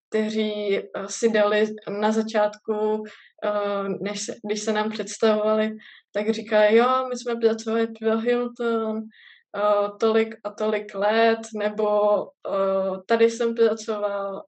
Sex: female